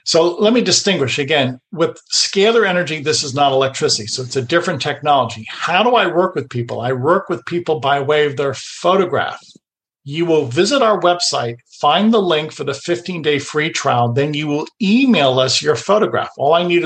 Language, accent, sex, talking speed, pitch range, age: English, American, male, 195 wpm, 135-185 Hz, 50-69